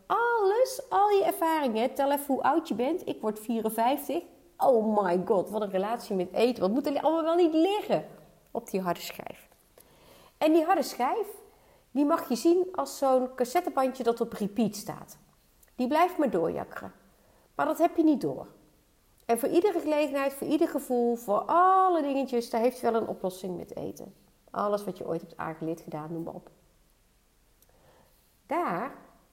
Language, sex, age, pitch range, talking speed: Dutch, female, 40-59, 190-295 Hz, 175 wpm